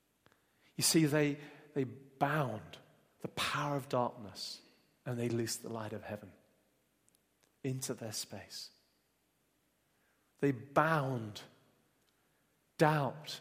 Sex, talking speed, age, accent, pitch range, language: male, 100 wpm, 40-59, British, 115-150 Hz, English